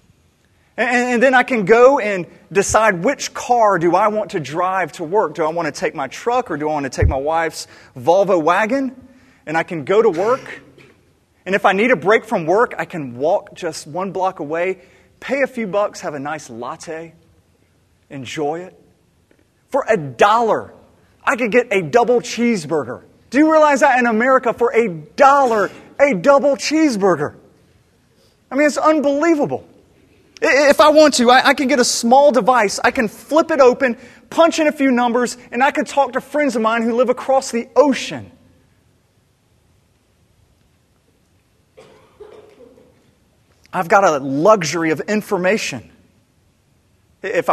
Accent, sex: American, male